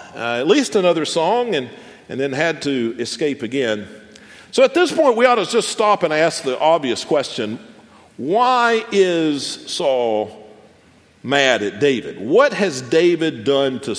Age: 50-69